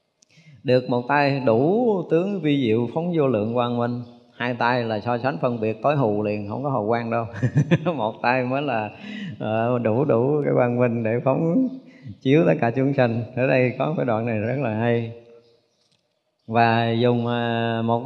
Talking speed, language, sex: 185 wpm, Vietnamese, male